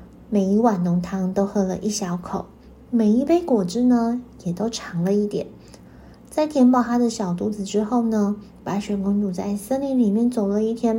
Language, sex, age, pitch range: Chinese, female, 20-39, 195-245 Hz